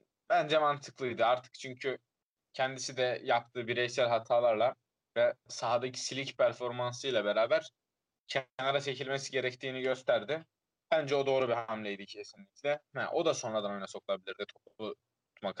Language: Turkish